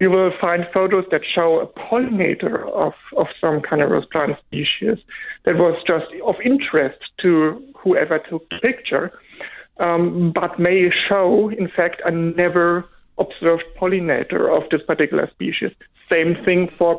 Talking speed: 140 wpm